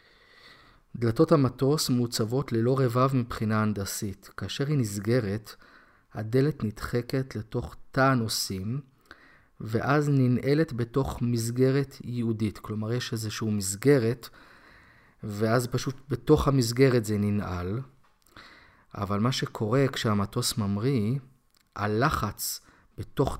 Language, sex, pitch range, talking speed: Hebrew, male, 110-135 Hz, 95 wpm